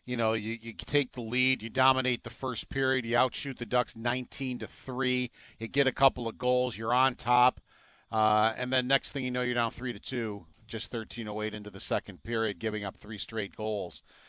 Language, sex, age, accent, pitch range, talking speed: English, male, 50-69, American, 115-135 Hz, 225 wpm